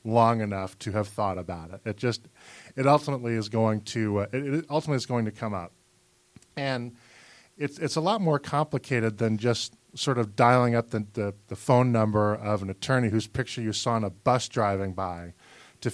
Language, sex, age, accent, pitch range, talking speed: English, male, 40-59, American, 110-130 Hz, 200 wpm